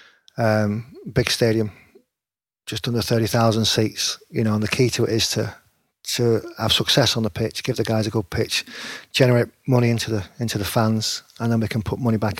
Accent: British